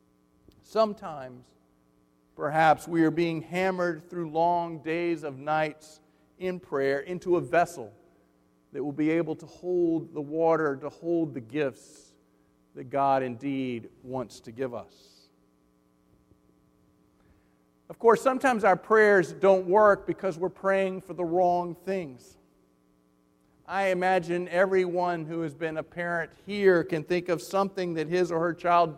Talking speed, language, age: 140 wpm, English, 50-69